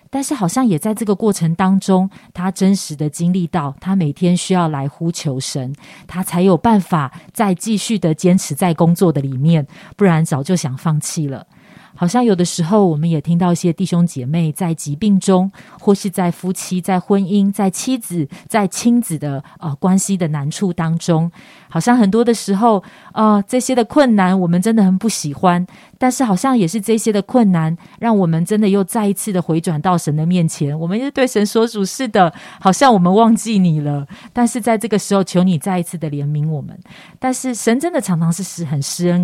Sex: female